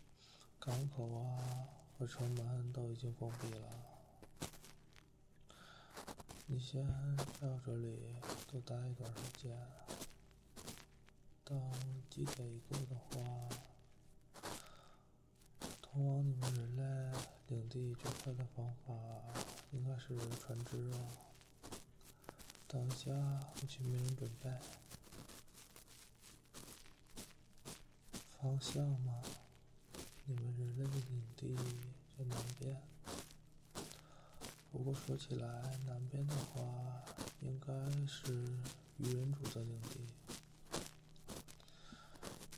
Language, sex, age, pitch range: Chinese, male, 20-39, 120-135 Hz